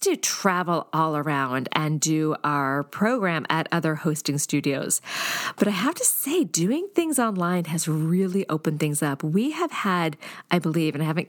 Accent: American